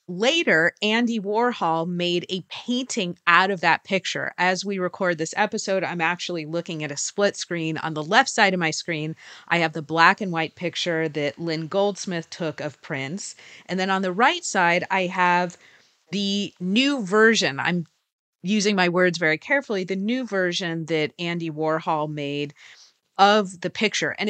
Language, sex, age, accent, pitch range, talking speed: English, female, 30-49, American, 160-205 Hz, 175 wpm